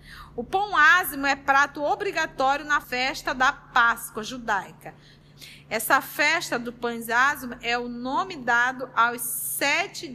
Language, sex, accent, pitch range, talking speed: Portuguese, female, Brazilian, 230-300 Hz, 130 wpm